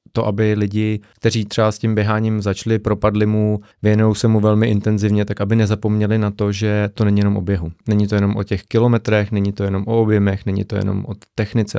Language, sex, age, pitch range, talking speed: Czech, male, 30-49, 95-110 Hz, 220 wpm